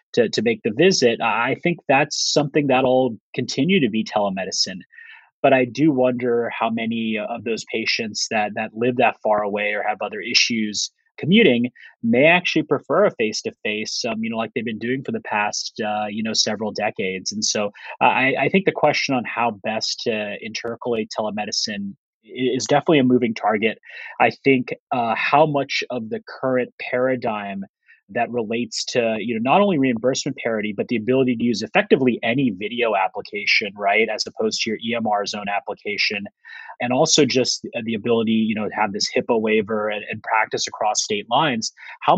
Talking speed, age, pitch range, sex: 180 wpm, 30-49, 110-145 Hz, male